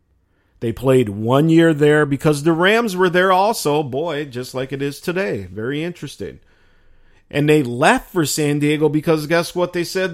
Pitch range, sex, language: 100-150 Hz, male, English